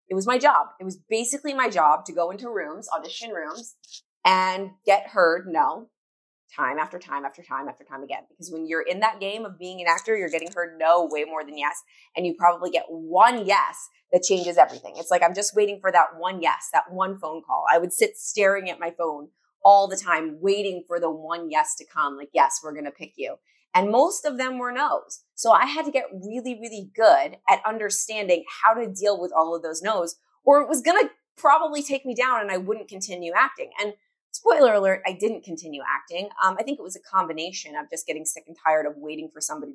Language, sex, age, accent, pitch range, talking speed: English, female, 20-39, American, 160-220 Hz, 230 wpm